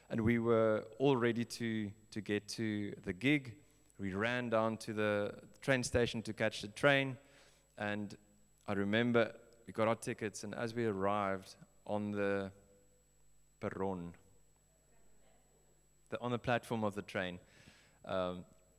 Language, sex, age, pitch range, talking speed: English, male, 20-39, 100-120 Hz, 135 wpm